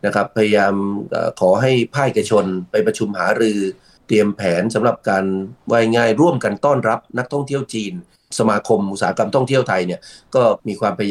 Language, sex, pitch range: Thai, male, 100-125 Hz